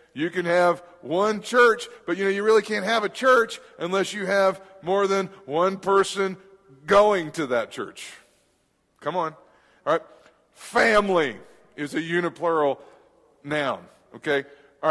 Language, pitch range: English, 160-205 Hz